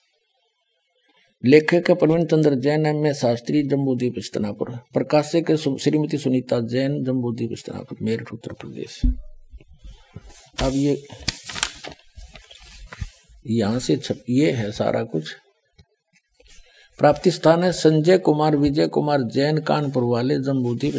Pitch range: 120-155 Hz